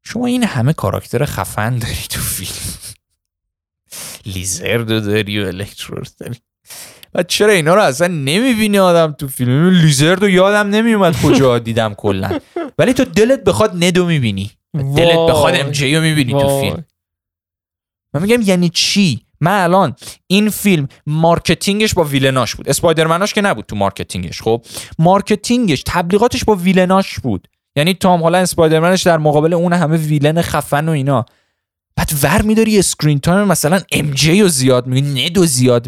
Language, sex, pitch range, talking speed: Persian, male, 115-175 Hz, 150 wpm